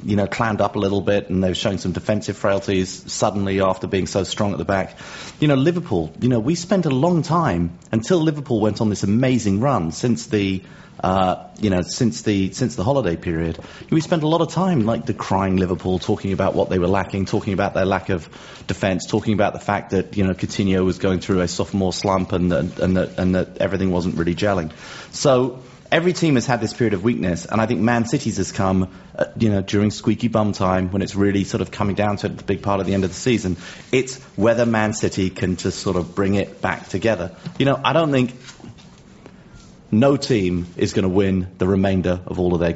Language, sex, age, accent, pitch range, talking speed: English, male, 30-49, British, 95-115 Hz, 230 wpm